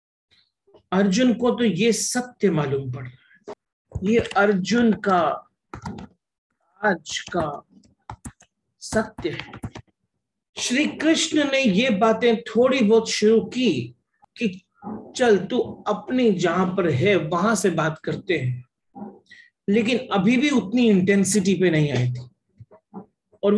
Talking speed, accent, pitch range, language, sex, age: 120 wpm, native, 170-225 Hz, Hindi, male, 50-69